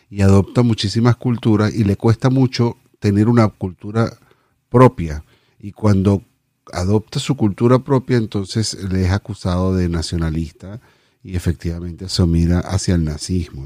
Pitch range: 95-125 Hz